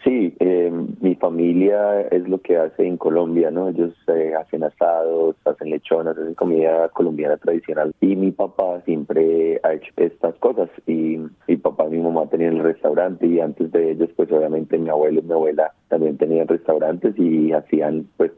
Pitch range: 80-85 Hz